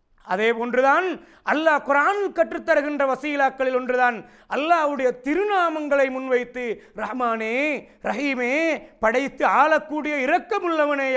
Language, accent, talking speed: Tamil, native, 80 wpm